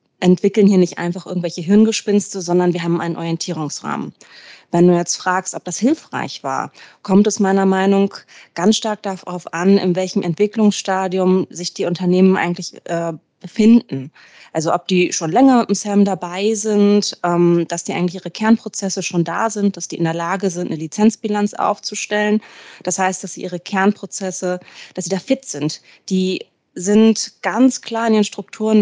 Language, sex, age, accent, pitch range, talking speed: German, female, 30-49, German, 180-210 Hz, 175 wpm